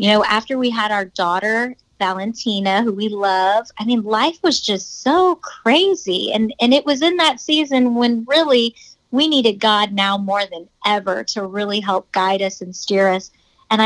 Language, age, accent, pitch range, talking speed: English, 30-49, American, 200-240 Hz, 185 wpm